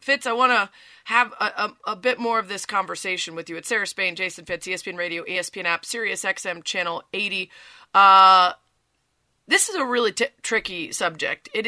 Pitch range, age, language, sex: 175-215 Hz, 30-49, English, female